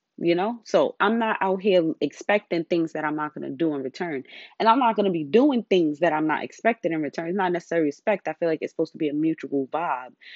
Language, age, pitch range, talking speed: English, 20-39, 155-200 Hz, 260 wpm